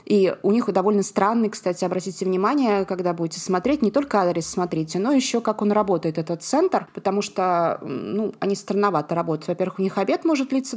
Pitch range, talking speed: 170-215 Hz, 190 wpm